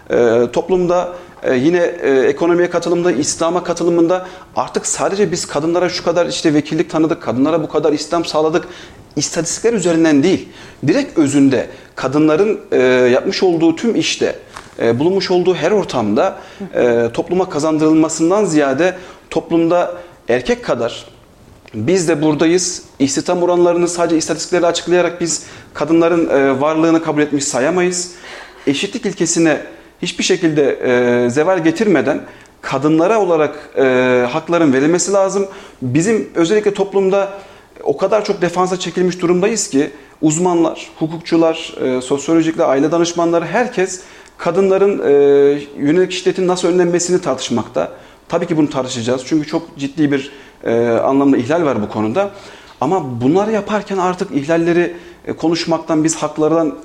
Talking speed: 120 wpm